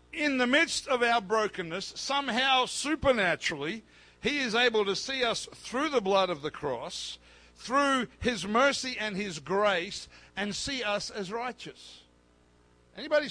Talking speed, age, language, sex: 145 wpm, 60-79, English, male